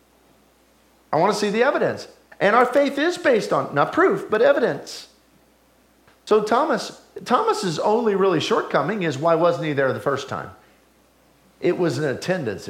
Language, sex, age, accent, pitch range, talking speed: English, male, 50-69, American, 130-185 Hz, 160 wpm